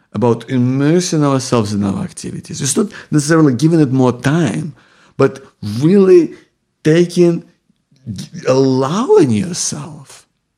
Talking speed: 100 wpm